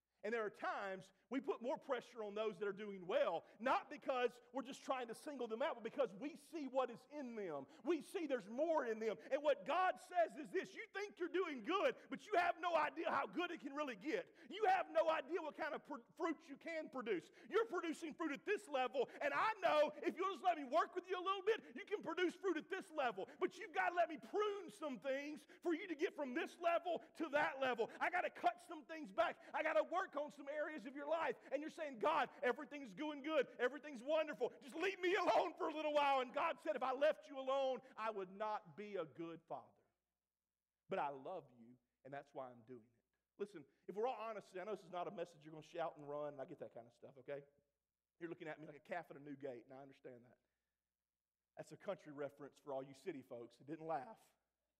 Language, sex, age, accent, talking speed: English, male, 40-59, American, 250 wpm